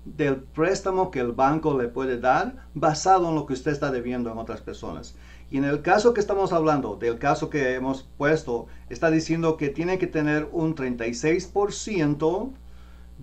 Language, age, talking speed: English, 50-69, 170 wpm